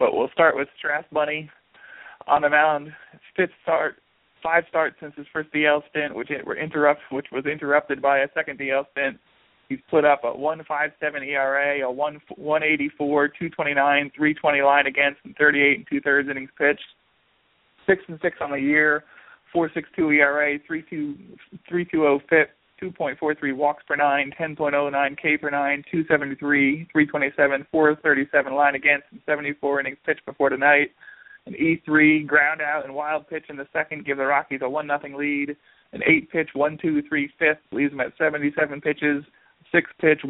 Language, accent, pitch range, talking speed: English, American, 140-155 Hz, 160 wpm